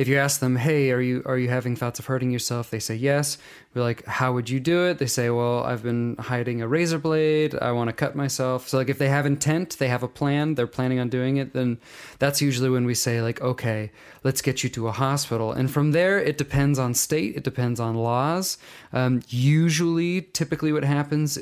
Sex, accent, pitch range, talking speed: male, American, 120-145 Hz, 235 wpm